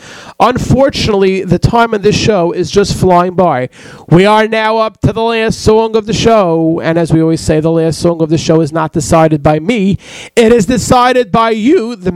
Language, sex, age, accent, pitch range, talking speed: English, male, 40-59, American, 165-210 Hz, 210 wpm